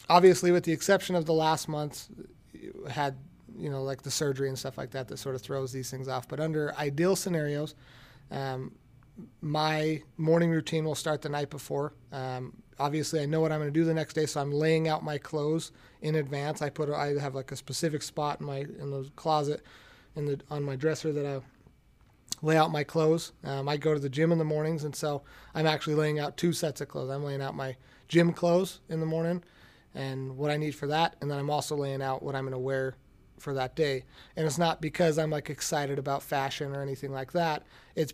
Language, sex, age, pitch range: English, male, 30-49, 135-155 Hz